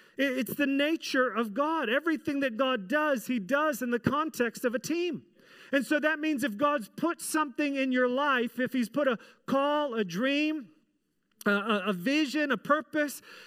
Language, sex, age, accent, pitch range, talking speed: English, male, 40-59, American, 240-295 Hz, 180 wpm